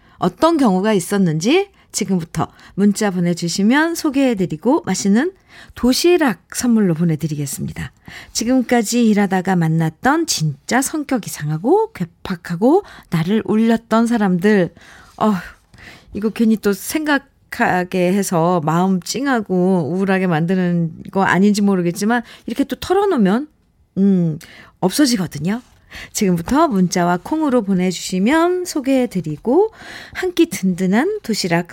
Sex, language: female, Korean